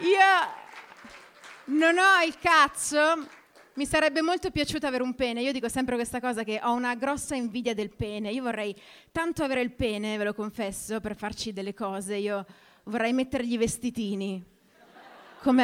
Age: 30-49